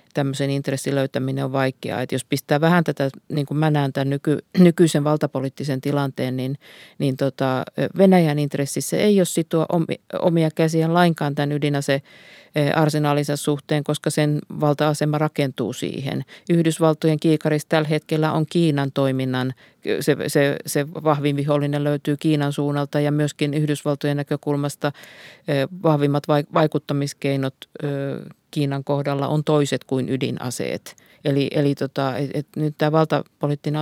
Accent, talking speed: native, 130 wpm